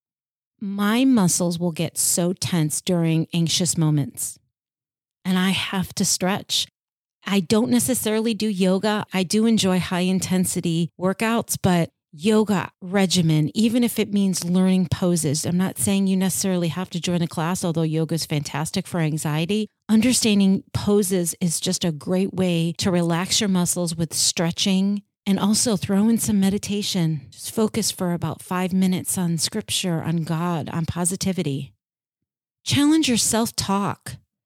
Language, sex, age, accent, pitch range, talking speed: English, female, 40-59, American, 170-205 Hz, 145 wpm